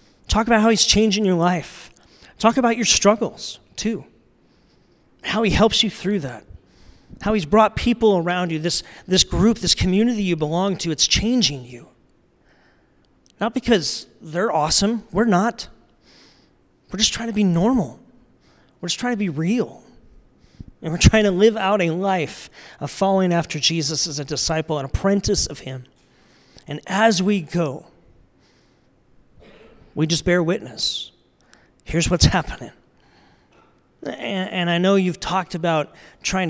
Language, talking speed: English, 150 wpm